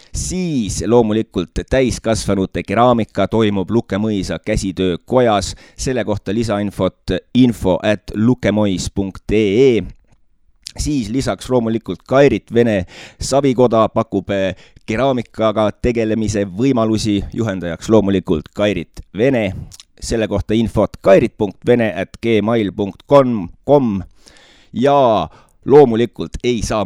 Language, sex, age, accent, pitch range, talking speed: English, male, 30-49, Finnish, 95-115 Hz, 85 wpm